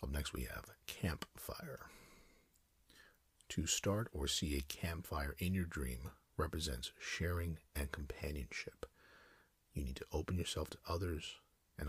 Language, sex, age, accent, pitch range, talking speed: English, male, 50-69, American, 70-90 Hz, 130 wpm